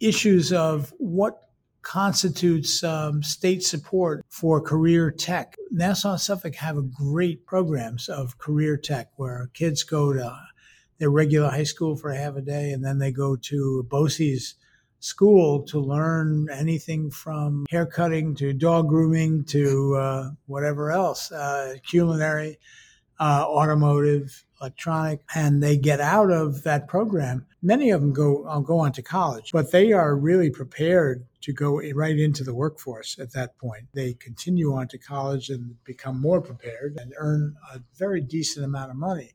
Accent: American